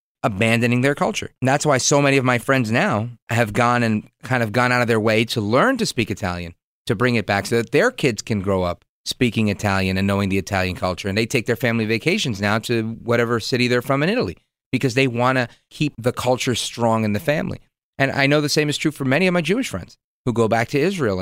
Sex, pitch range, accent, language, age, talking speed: male, 110-150 Hz, American, English, 40-59, 250 wpm